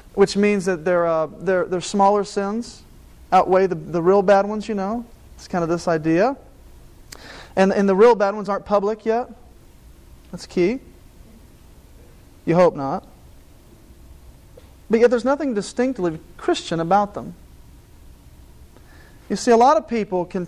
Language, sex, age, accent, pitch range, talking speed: English, male, 40-59, American, 175-220 Hz, 150 wpm